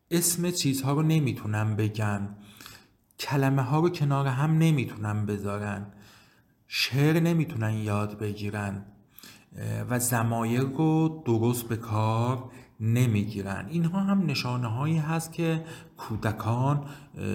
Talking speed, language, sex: 105 wpm, Persian, male